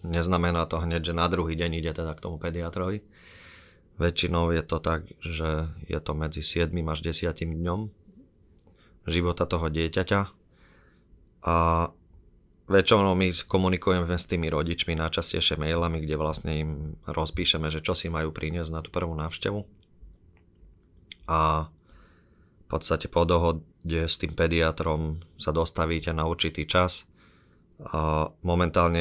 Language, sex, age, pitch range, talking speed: Slovak, male, 30-49, 80-90 Hz, 130 wpm